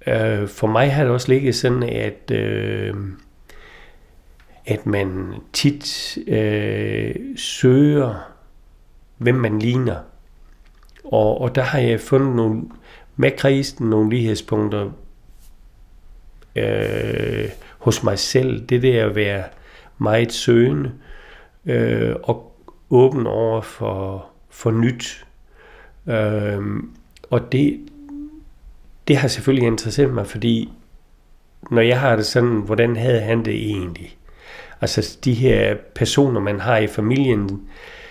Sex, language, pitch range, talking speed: male, Danish, 105-130 Hz, 115 wpm